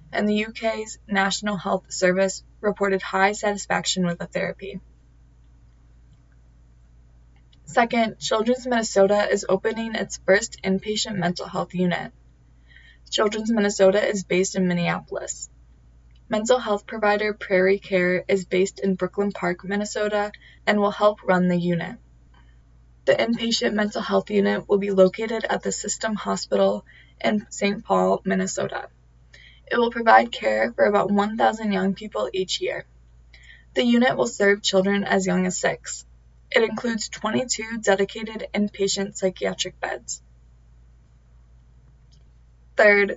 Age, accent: 20-39, American